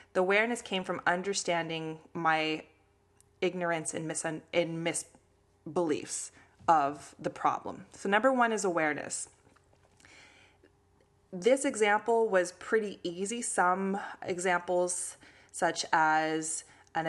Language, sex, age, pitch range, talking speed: English, female, 20-39, 160-195 Hz, 100 wpm